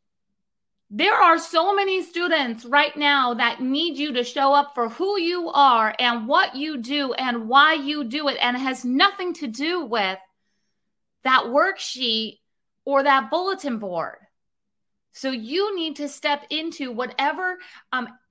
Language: English